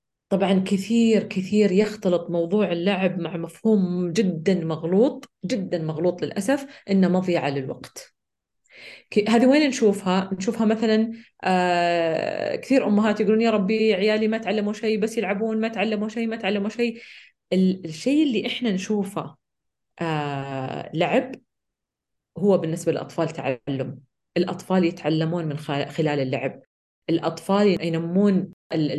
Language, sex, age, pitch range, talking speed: Arabic, female, 30-49, 165-215 Hz, 110 wpm